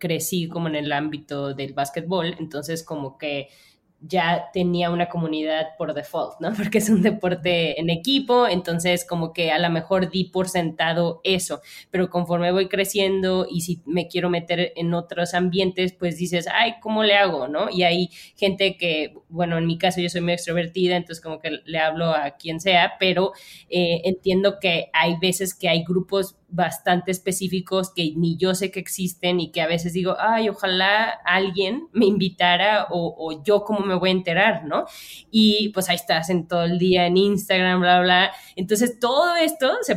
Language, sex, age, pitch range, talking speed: Spanish, female, 20-39, 170-195 Hz, 185 wpm